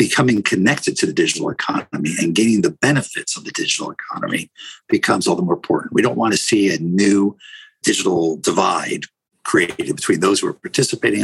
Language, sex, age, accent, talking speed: English, male, 50-69, American, 180 wpm